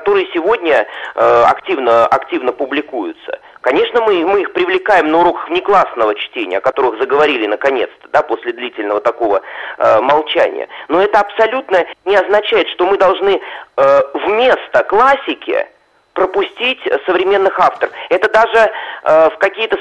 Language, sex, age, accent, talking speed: Russian, male, 40-59, native, 135 wpm